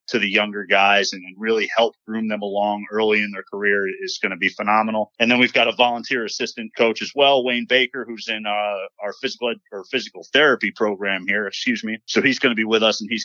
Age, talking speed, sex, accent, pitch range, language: 30-49, 240 wpm, male, American, 100-120 Hz, English